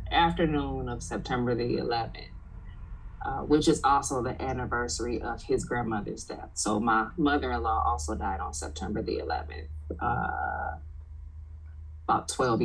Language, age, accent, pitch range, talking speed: English, 20-39, American, 95-145 Hz, 130 wpm